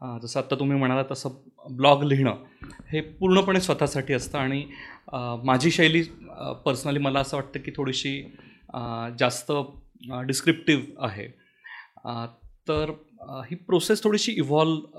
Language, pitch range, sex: Marathi, 135-175 Hz, male